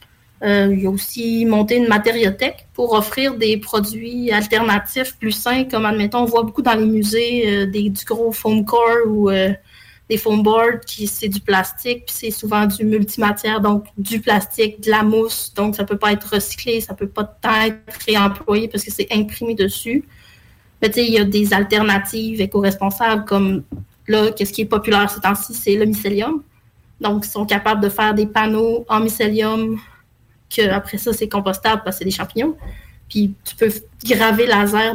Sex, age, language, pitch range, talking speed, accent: female, 30-49, French, 200-225 Hz, 185 wpm, Canadian